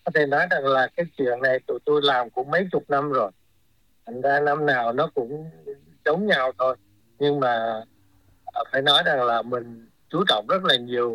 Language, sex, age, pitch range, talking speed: Vietnamese, male, 60-79, 120-155 Hz, 200 wpm